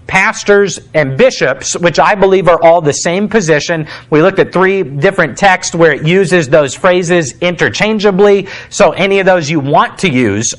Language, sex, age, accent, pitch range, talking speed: English, male, 40-59, American, 160-200 Hz, 175 wpm